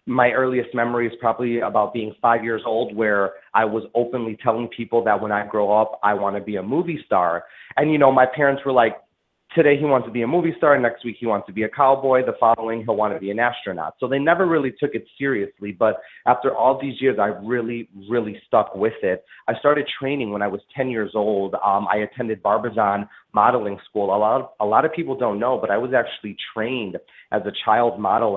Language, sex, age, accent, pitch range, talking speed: English, male, 30-49, American, 105-125 Hz, 230 wpm